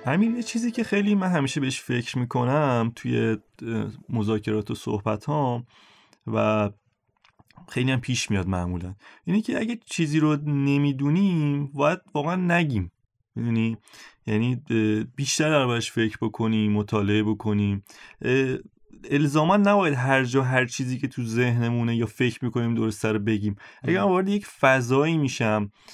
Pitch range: 110-145 Hz